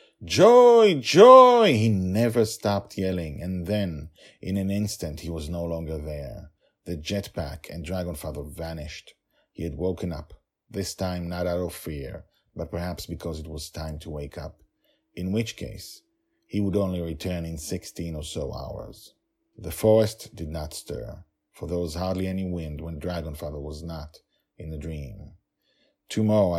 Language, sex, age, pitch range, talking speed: English, male, 40-59, 80-100 Hz, 160 wpm